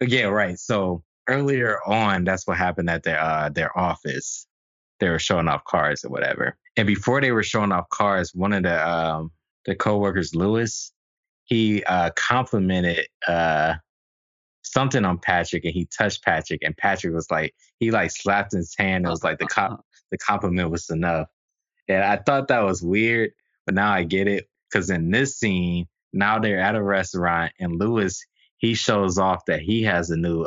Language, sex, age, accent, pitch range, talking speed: English, male, 20-39, American, 85-105 Hz, 185 wpm